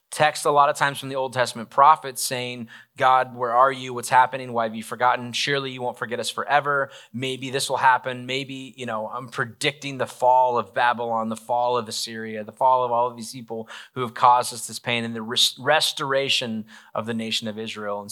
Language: English